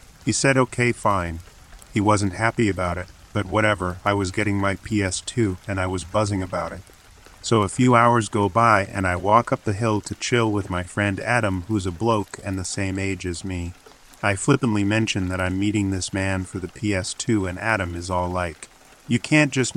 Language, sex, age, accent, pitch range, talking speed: English, male, 40-59, American, 95-110 Hz, 205 wpm